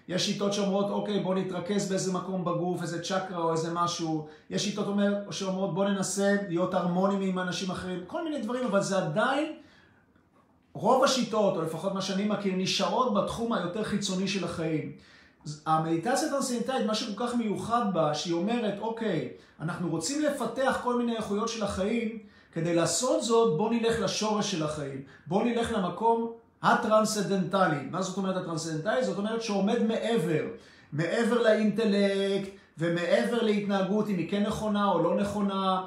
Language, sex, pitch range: Hebrew, male, 175-220 Hz